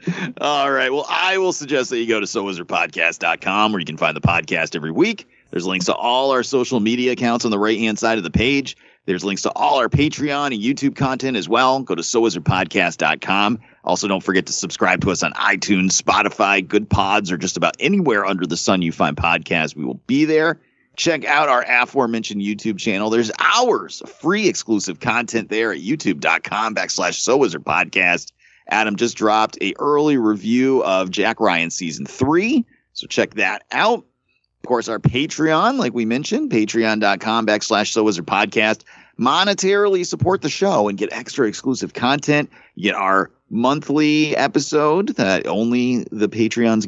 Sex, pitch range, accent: male, 105-145 Hz, American